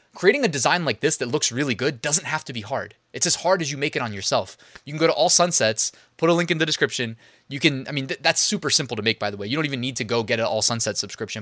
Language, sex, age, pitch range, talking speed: English, male, 20-39, 115-160 Hz, 305 wpm